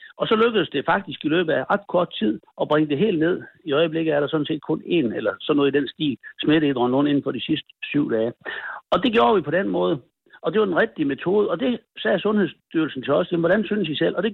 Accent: native